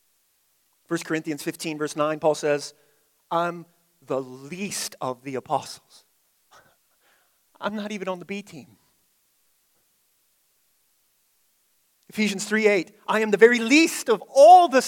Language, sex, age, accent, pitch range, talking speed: English, male, 30-49, American, 195-275 Hz, 125 wpm